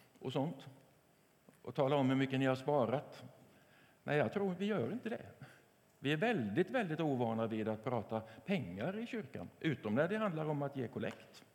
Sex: male